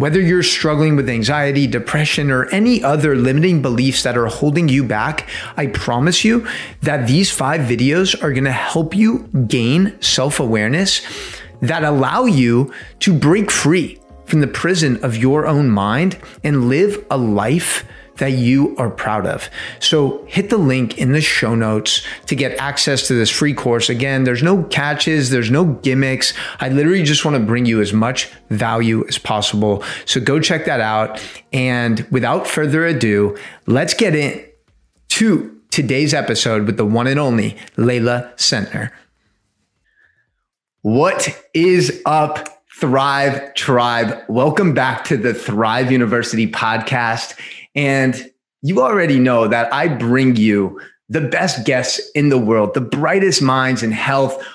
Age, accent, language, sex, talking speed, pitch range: 30-49, American, English, male, 150 wpm, 120-150 Hz